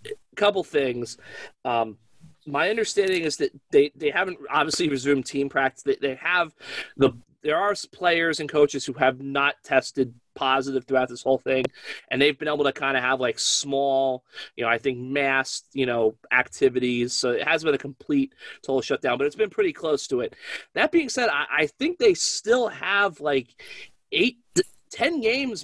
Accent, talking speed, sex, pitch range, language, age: American, 185 wpm, male, 135-175 Hz, English, 30-49